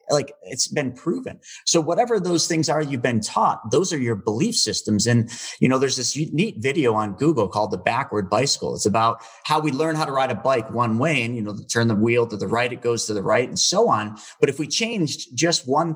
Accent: American